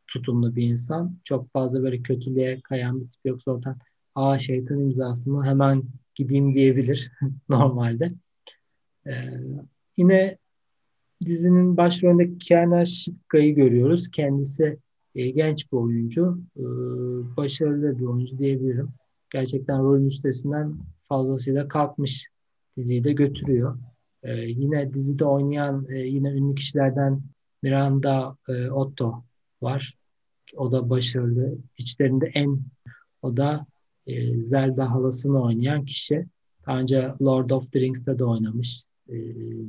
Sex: male